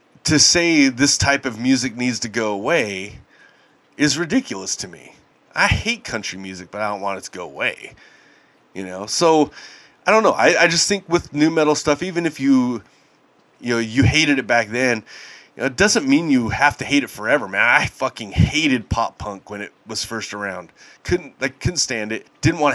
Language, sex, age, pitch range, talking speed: English, male, 30-49, 110-150 Hz, 210 wpm